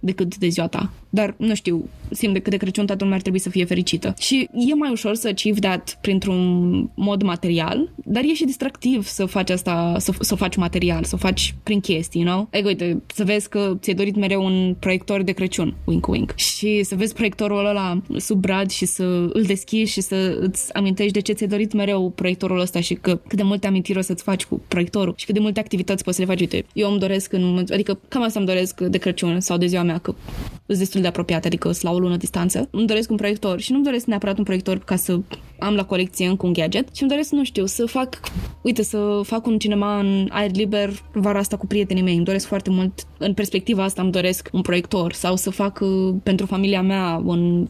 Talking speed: 235 wpm